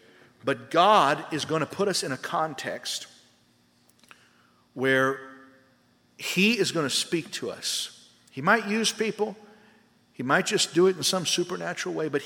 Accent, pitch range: American, 115-175 Hz